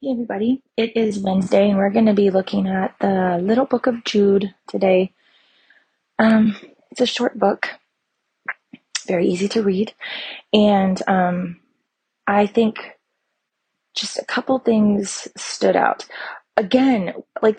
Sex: female